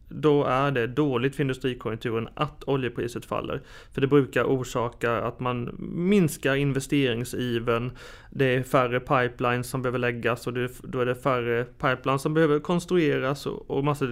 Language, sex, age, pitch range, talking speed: Swedish, male, 30-49, 125-155 Hz, 150 wpm